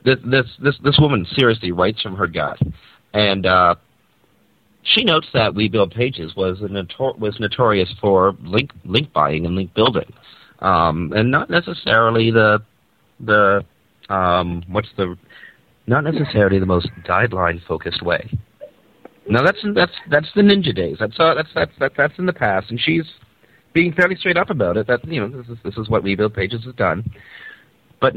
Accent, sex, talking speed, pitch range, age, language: American, male, 180 wpm, 85-125 Hz, 40-59, English